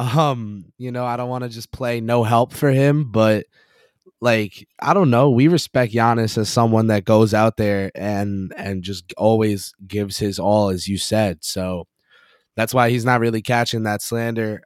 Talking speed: 190 wpm